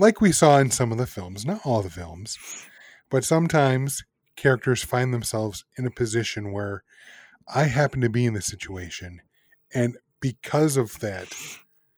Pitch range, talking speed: 110-130 Hz, 160 wpm